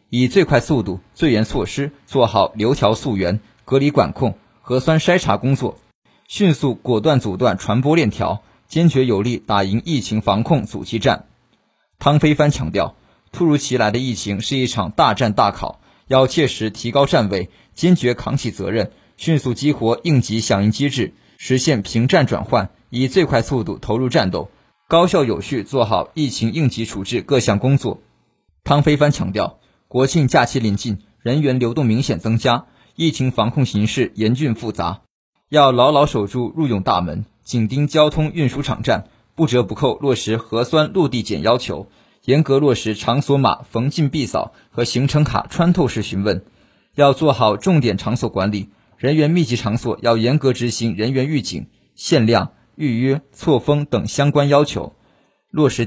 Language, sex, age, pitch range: Chinese, male, 20-39, 110-145 Hz